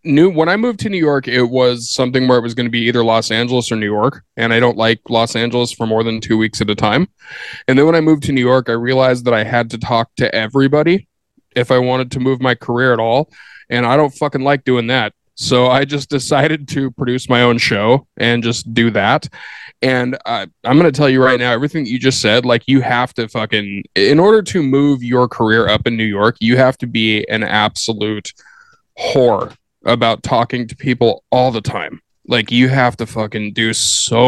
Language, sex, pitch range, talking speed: English, male, 115-135 Hz, 230 wpm